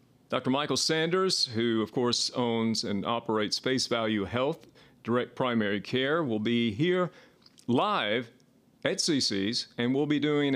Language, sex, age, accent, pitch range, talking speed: English, male, 40-59, American, 110-150 Hz, 140 wpm